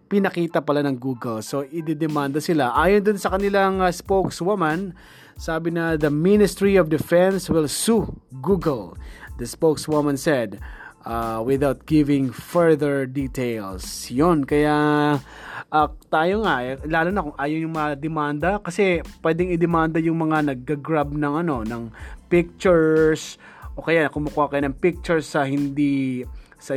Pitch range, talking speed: 135-165 Hz, 135 wpm